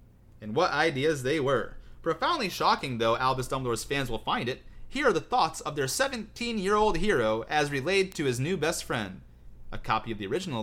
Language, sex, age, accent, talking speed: English, male, 30-49, American, 190 wpm